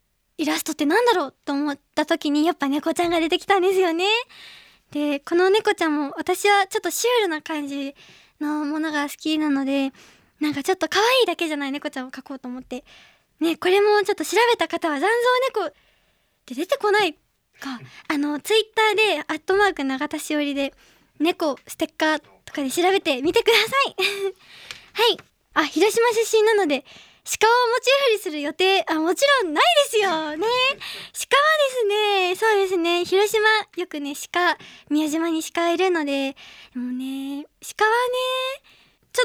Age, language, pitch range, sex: 20-39, Japanese, 300-420 Hz, male